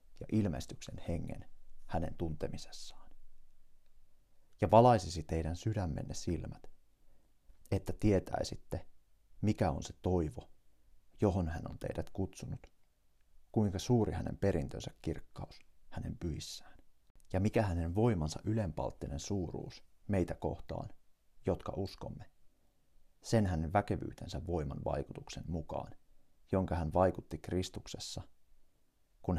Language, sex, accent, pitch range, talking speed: Finnish, male, native, 80-100 Hz, 100 wpm